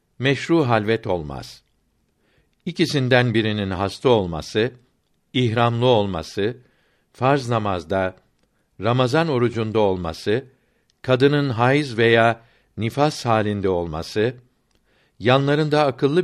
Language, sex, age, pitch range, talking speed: Turkish, male, 60-79, 110-140 Hz, 80 wpm